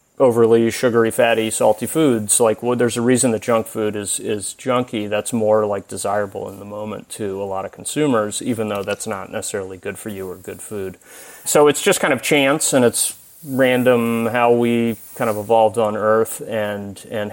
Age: 30-49